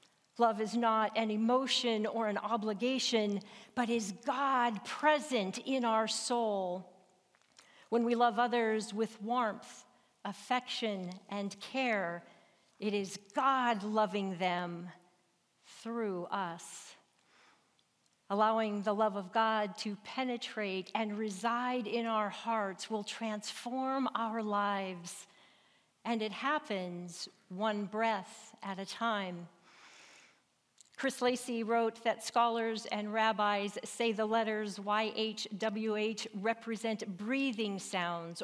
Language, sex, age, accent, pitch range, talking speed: English, female, 50-69, American, 200-235 Hz, 110 wpm